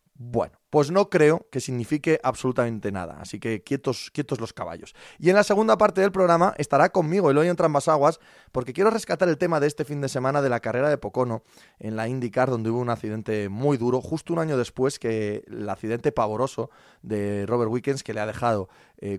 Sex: male